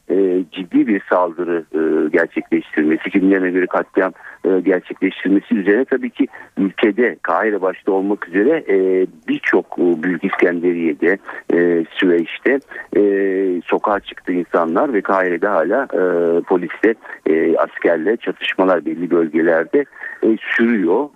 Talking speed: 120 wpm